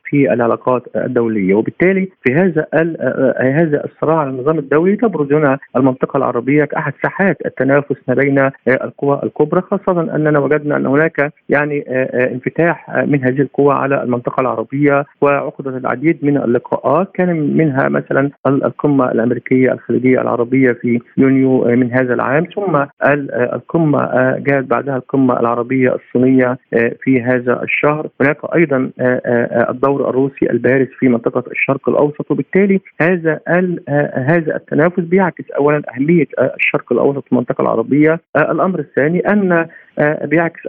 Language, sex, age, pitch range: Arabic, male, 50-69, 125-155 Hz